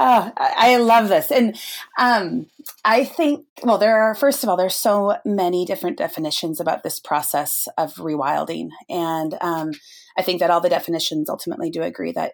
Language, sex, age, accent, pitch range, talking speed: English, female, 30-49, American, 160-215 Hz, 170 wpm